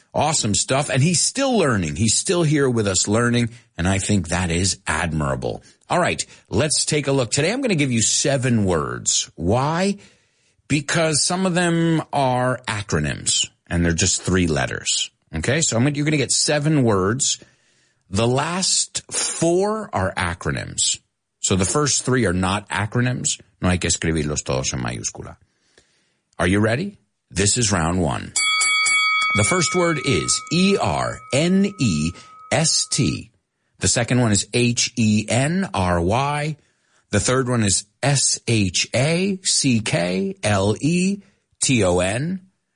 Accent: American